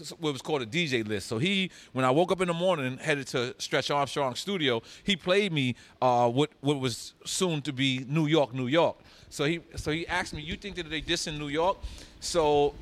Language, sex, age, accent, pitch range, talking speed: English, male, 30-49, American, 120-150 Hz, 230 wpm